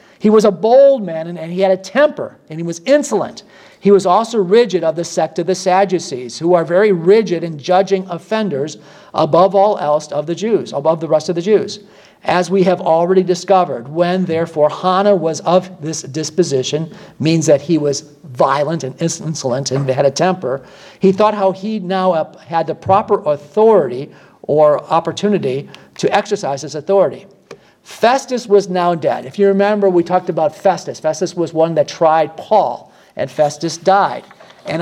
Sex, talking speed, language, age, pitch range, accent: male, 180 wpm, English, 50-69, 160-200 Hz, American